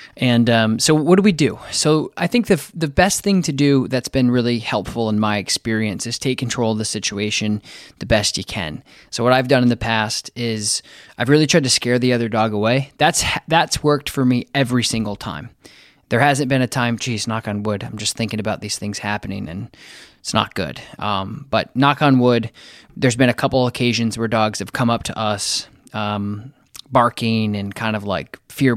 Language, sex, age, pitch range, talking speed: English, male, 20-39, 105-135 Hz, 215 wpm